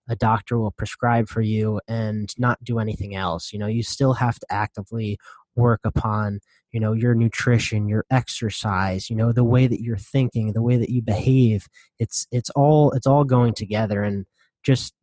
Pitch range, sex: 110-125 Hz, male